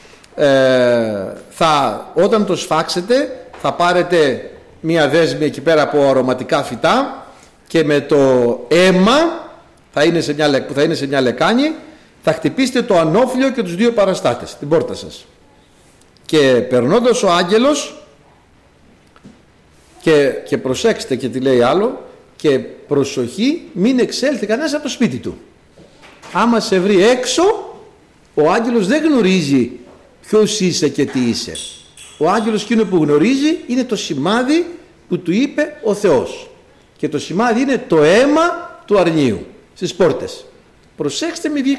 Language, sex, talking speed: Greek, male, 130 wpm